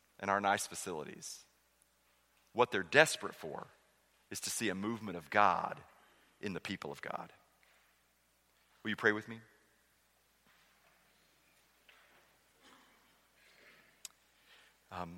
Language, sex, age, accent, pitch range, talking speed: English, male, 40-59, American, 105-120 Hz, 105 wpm